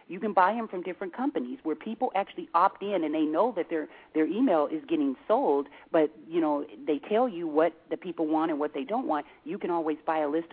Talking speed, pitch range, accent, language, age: 245 wpm, 155-220 Hz, American, English, 40-59